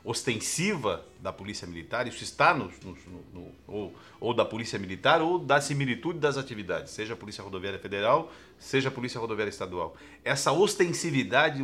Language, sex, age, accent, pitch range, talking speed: Portuguese, male, 50-69, Brazilian, 110-150 Hz, 165 wpm